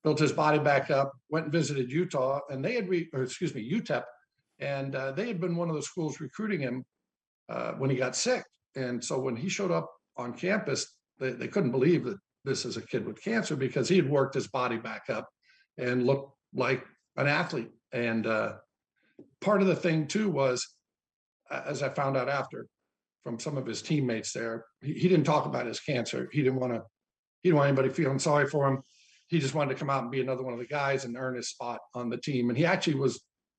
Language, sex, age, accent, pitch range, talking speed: English, male, 60-79, American, 125-155 Hz, 225 wpm